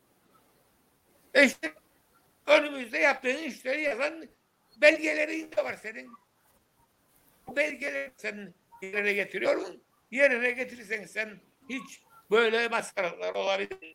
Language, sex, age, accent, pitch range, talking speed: Turkish, male, 60-79, native, 215-295 Hz, 95 wpm